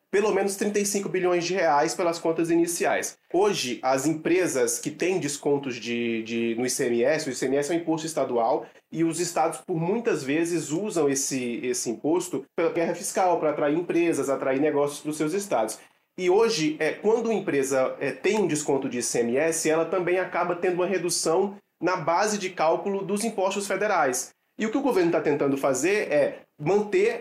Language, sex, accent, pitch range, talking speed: Portuguese, male, Brazilian, 145-200 Hz, 180 wpm